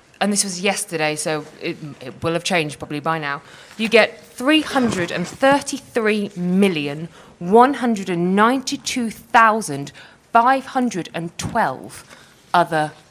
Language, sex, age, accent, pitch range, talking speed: English, female, 20-39, British, 160-220 Hz, 80 wpm